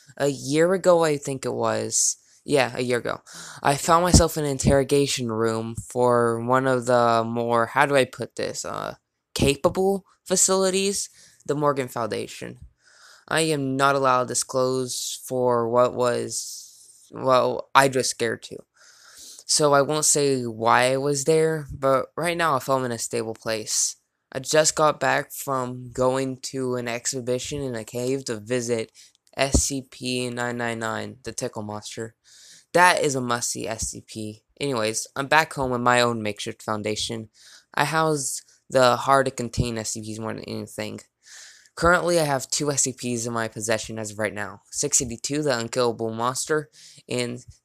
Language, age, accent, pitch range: English, 20-39, American, 115-140 Hz